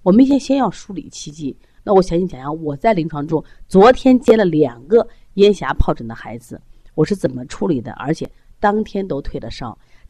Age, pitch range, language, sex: 30-49, 130-185 Hz, Chinese, female